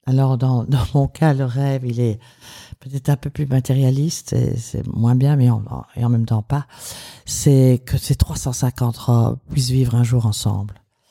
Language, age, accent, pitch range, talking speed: French, 50-69, French, 115-135 Hz, 185 wpm